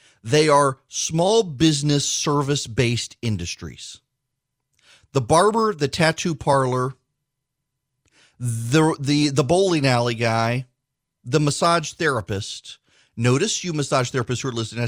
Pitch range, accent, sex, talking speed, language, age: 120-155 Hz, American, male, 115 wpm, English, 40-59